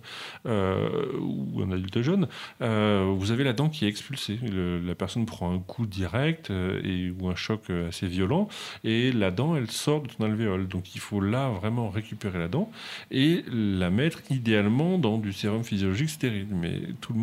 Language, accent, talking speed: French, French, 185 wpm